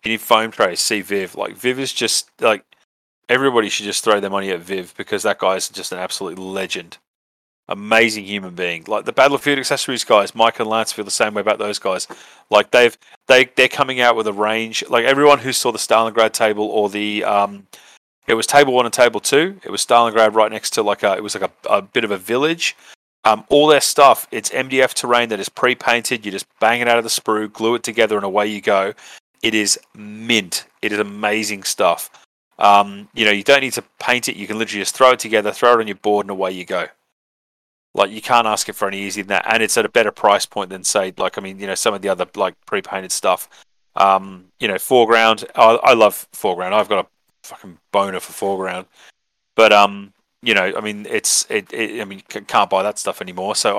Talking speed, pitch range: 235 wpm, 100-120 Hz